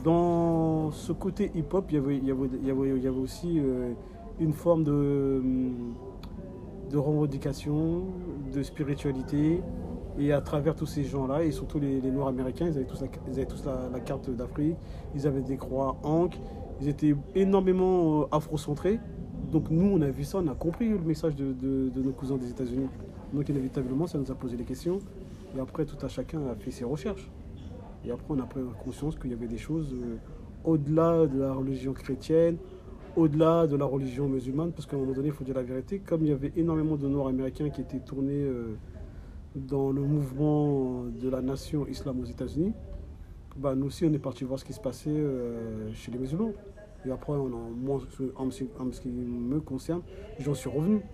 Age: 40-59